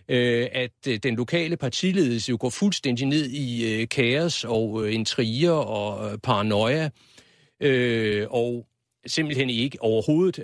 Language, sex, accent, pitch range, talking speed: Danish, male, native, 110-145 Hz, 105 wpm